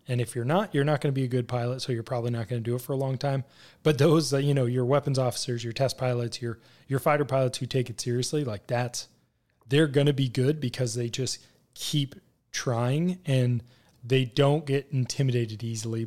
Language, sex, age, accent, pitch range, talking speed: English, male, 20-39, American, 120-145 Hz, 230 wpm